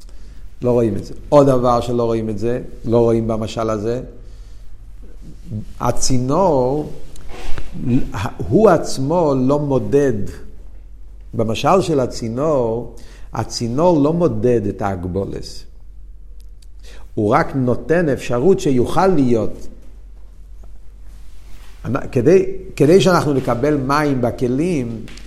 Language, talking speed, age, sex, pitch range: Hebrew, 95 wpm, 50-69, male, 115-170 Hz